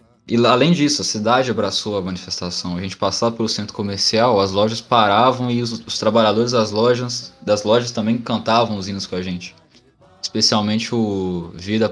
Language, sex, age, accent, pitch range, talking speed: Portuguese, male, 20-39, Brazilian, 100-120 Hz, 175 wpm